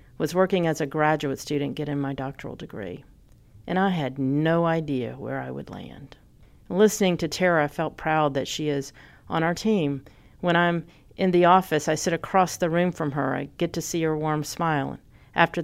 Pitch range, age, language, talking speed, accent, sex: 140-175 Hz, 40-59, English, 195 wpm, American, female